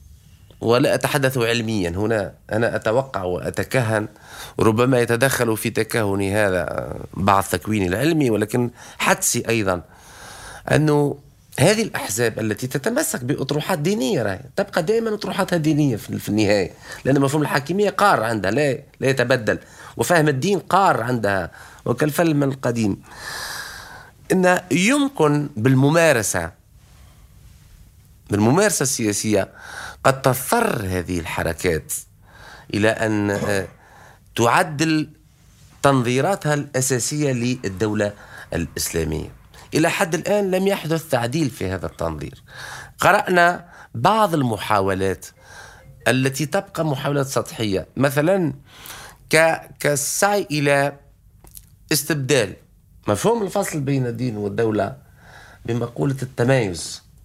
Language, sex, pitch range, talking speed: Arabic, male, 105-150 Hz, 90 wpm